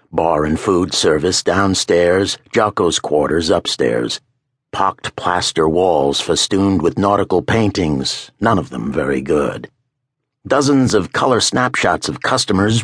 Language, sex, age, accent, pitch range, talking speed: English, male, 60-79, American, 90-130 Hz, 120 wpm